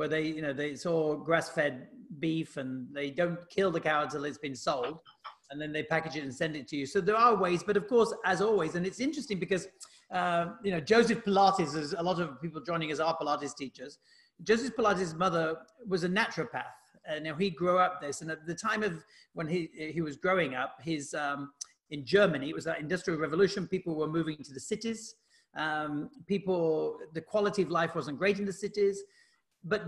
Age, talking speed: 40-59, 215 wpm